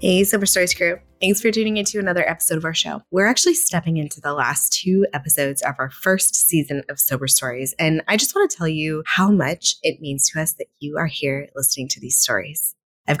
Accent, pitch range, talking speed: American, 150-190 Hz, 225 wpm